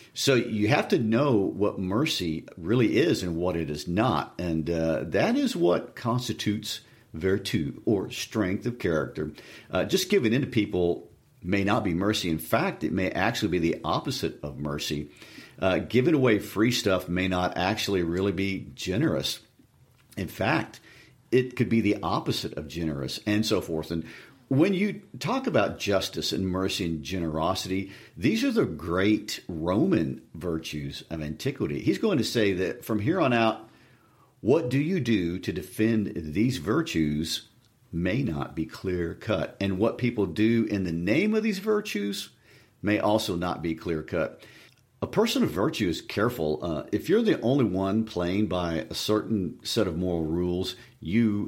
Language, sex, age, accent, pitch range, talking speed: English, male, 50-69, American, 85-115 Hz, 170 wpm